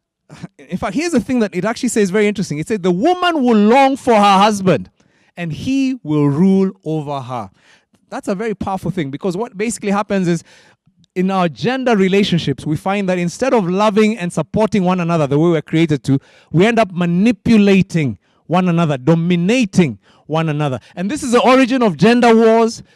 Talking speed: 190 wpm